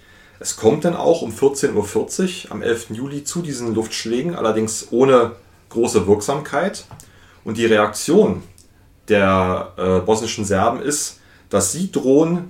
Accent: German